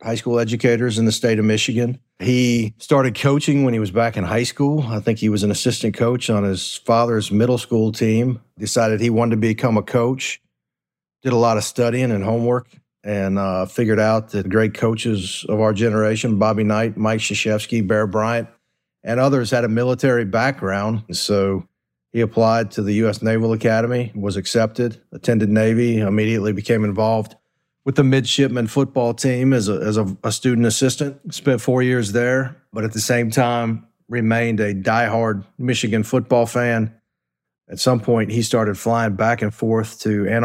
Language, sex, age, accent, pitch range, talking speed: English, male, 50-69, American, 105-120 Hz, 175 wpm